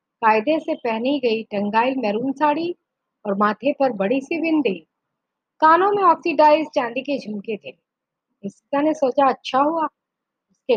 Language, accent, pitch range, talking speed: Hindi, native, 210-280 Hz, 145 wpm